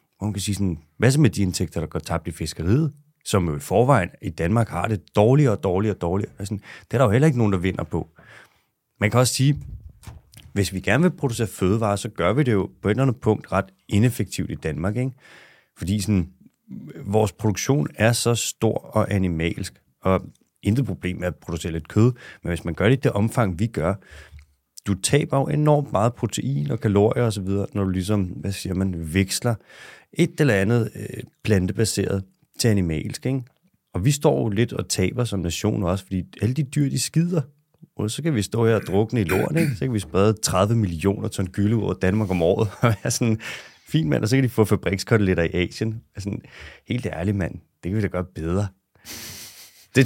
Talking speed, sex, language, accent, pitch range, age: 215 wpm, male, Danish, native, 95-120 Hz, 30-49